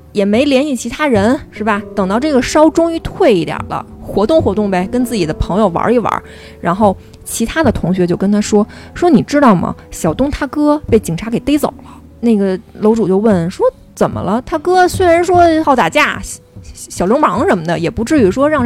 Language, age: Chinese, 20-39